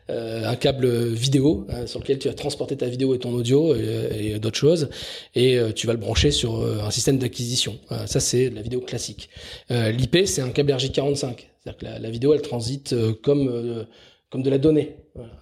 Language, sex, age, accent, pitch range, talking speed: French, male, 20-39, French, 115-140 Hz, 225 wpm